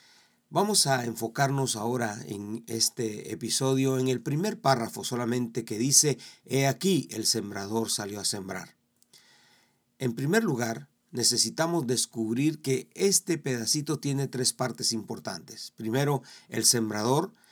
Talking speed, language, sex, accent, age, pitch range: 125 wpm, Spanish, male, Mexican, 50-69, 115-145 Hz